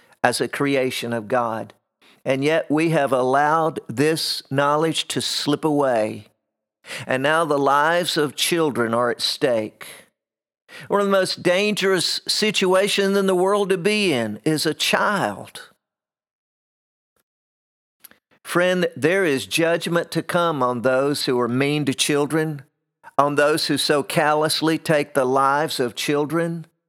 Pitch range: 130-165 Hz